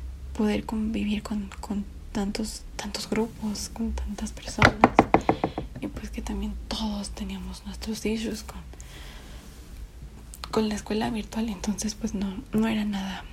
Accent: Mexican